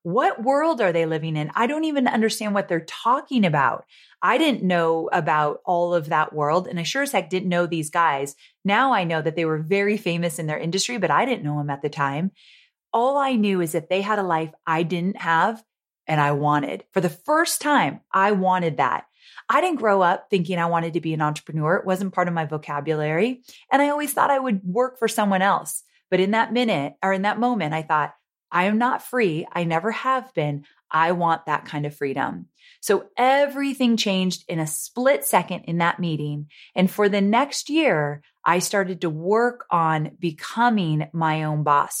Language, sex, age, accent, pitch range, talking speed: English, female, 30-49, American, 160-215 Hz, 210 wpm